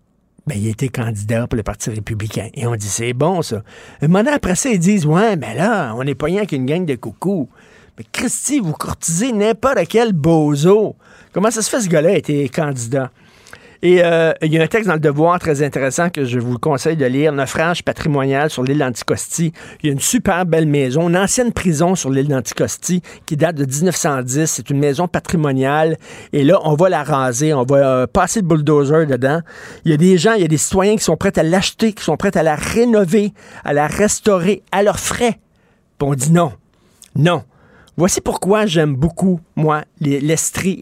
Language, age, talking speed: French, 50-69, 210 wpm